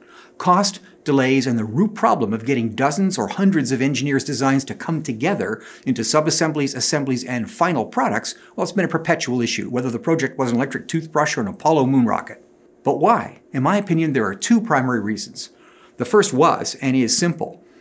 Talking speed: 195 wpm